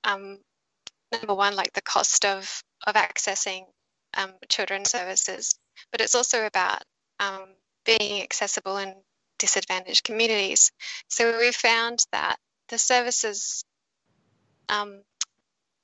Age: 10-29